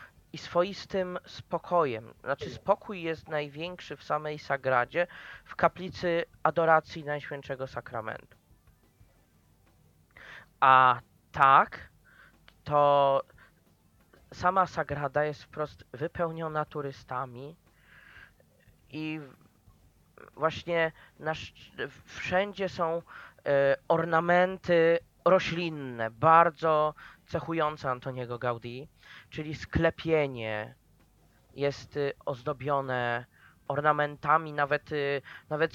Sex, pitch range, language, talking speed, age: male, 135-175 Hz, Polish, 65 wpm, 20-39